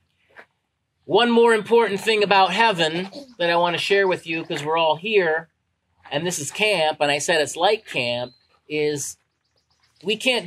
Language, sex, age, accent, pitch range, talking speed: English, male, 40-59, American, 145-210 Hz, 170 wpm